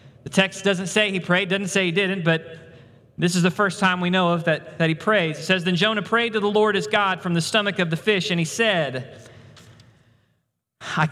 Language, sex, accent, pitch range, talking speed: English, male, American, 155-215 Hz, 230 wpm